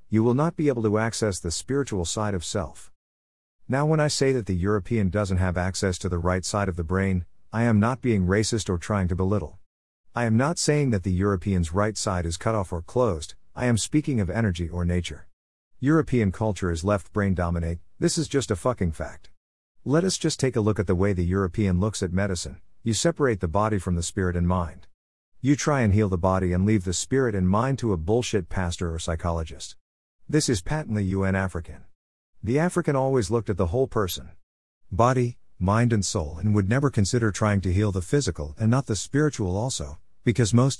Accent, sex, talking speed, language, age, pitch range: American, male, 215 wpm, English, 50-69, 90-120 Hz